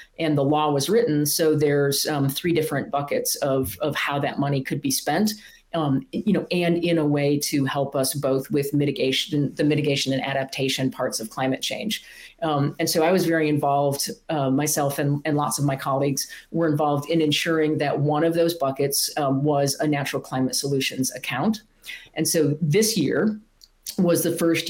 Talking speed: 190 wpm